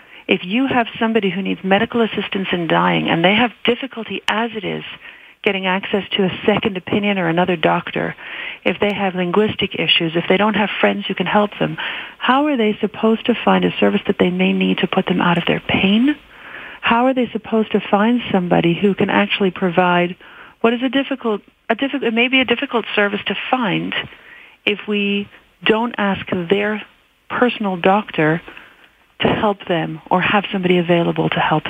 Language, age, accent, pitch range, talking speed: English, 40-59, American, 185-225 Hz, 185 wpm